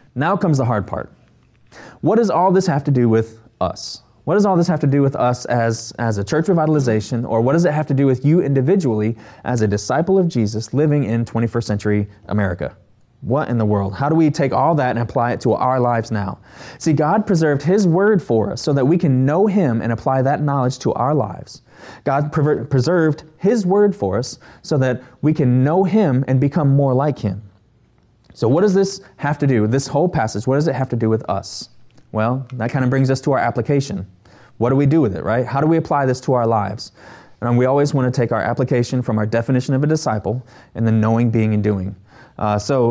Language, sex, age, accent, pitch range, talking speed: English, male, 20-39, American, 115-150 Hz, 230 wpm